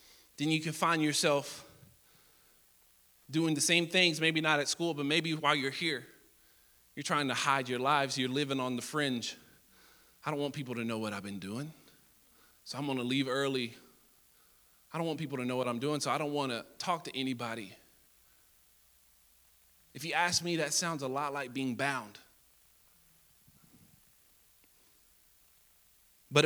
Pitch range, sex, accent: 145-185 Hz, male, American